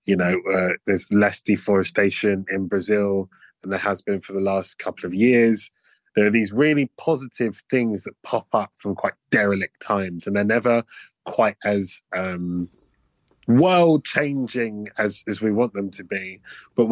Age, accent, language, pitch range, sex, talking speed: 20-39, British, English, 105-125 Hz, male, 165 wpm